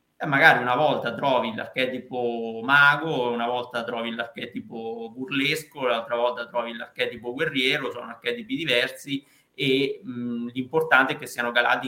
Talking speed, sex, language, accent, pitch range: 130 wpm, male, Italian, native, 120-140 Hz